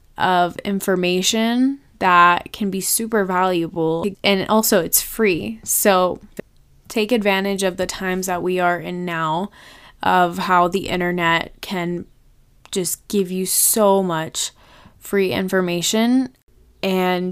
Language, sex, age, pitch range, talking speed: English, female, 20-39, 180-205 Hz, 120 wpm